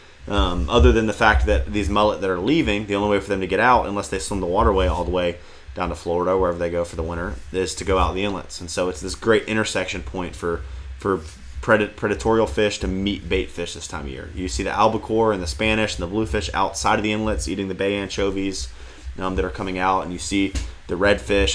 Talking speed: 250 wpm